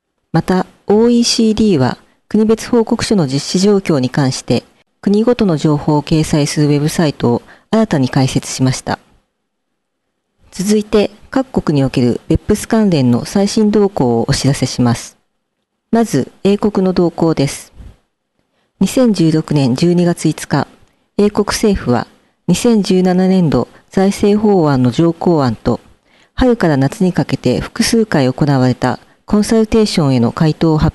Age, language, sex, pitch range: 40-59, Japanese, female, 135-210 Hz